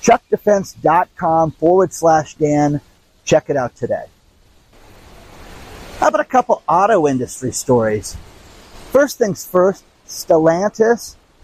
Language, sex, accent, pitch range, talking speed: English, male, American, 130-185 Hz, 100 wpm